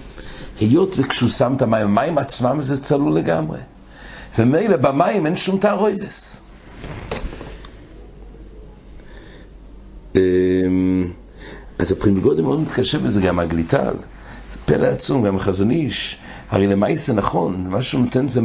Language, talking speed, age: English, 110 wpm, 60-79